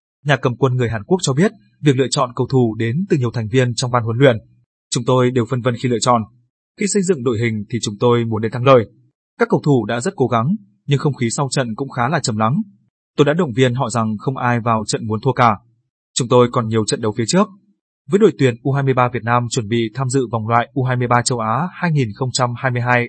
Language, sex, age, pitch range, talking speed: Vietnamese, male, 20-39, 120-145 Hz, 250 wpm